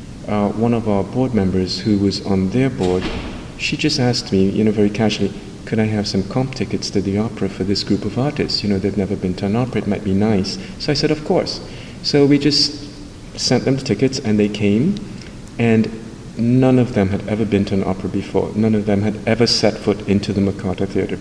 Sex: male